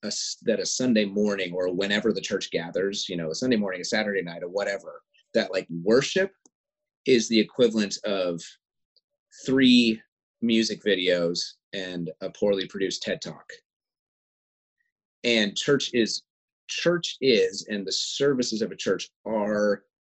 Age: 30-49